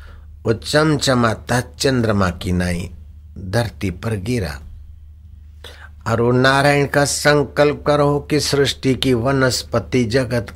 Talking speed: 95 wpm